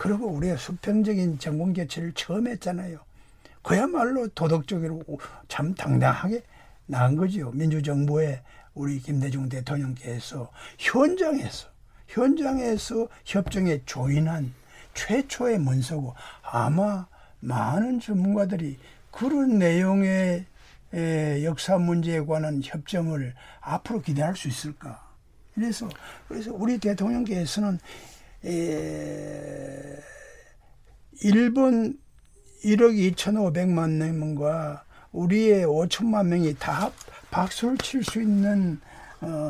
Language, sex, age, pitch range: Korean, male, 60-79, 150-210 Hz